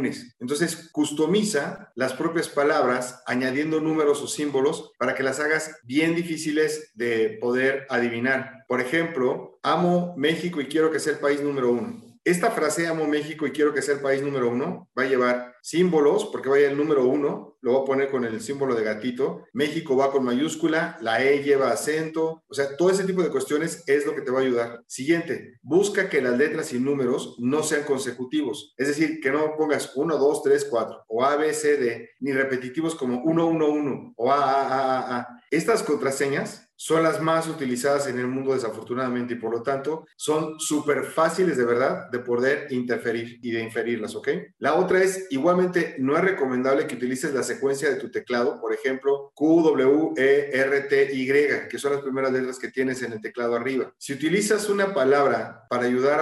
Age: 40-59